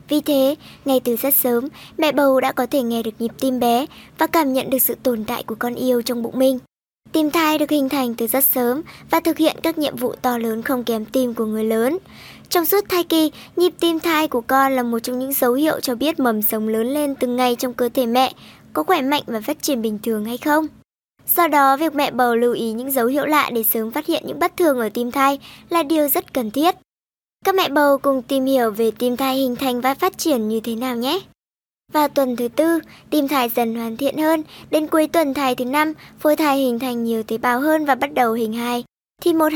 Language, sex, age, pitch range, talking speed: Vietnamese, male, 20-39, 240-300 Hz, 245 wpm